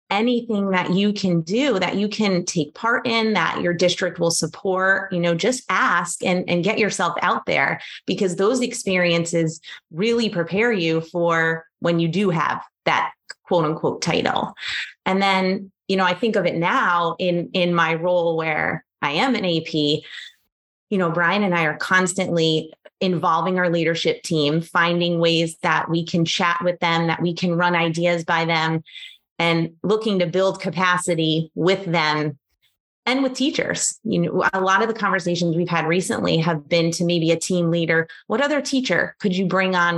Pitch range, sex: 165-190 Hz, female